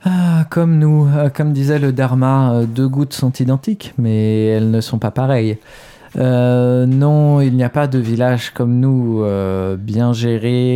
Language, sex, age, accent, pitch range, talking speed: French, male, 20-39, French, 110-130 Hz, 165 wpm